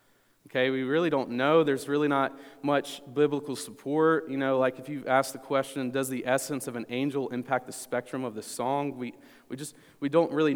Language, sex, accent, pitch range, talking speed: English, male, American, 115-140 Hz, 210 wpm